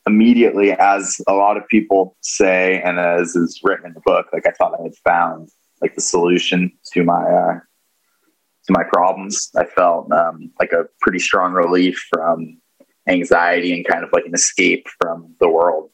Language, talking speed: English, 180 wpm